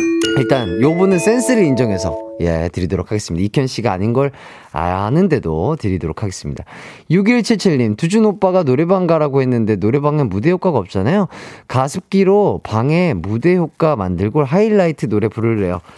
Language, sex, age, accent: Korean, male, 30-49, native